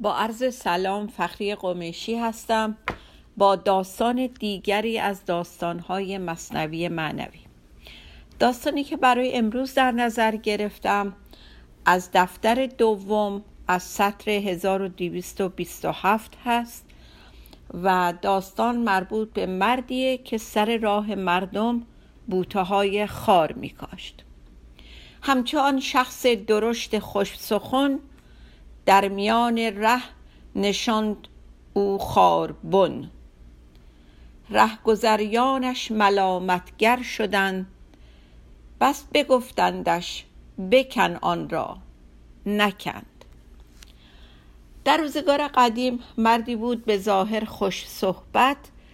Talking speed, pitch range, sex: 85 wpm, 175-235 Hz, female